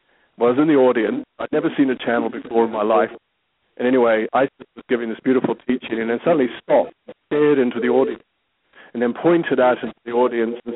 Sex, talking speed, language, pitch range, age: male, 225 wpm, English, 120-130 Hz, 50-69